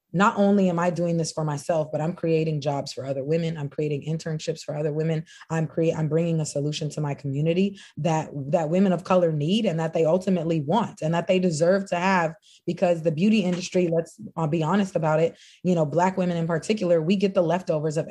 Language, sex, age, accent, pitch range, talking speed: English, female, 20-39, American, 155-180 Hz, 220 wpm